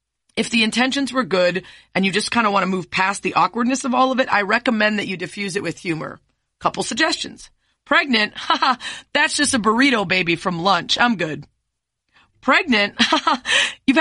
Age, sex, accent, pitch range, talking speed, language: 30-49, female, American, 185-250 Hz, 180 wpm, English